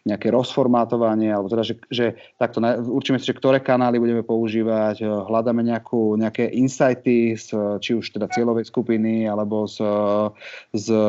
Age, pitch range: 30-49, 110-125 Hz